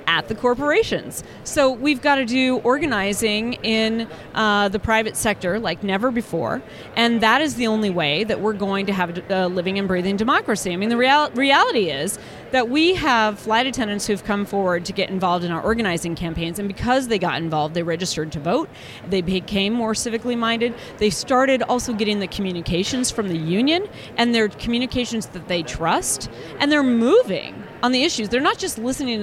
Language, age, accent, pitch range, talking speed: English, 30-49, American, 185-250 Hz, 190 wpm